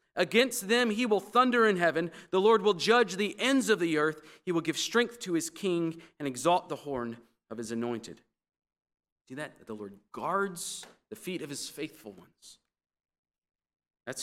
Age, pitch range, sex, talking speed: 40-59, 135-210 Hz, male, 175 wpm